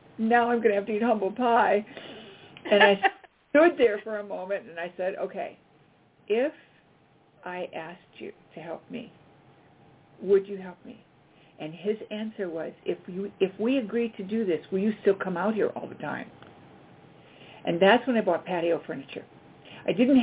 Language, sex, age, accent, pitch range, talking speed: English, female, 50-69, American, 185-225 Hz, 180 wpm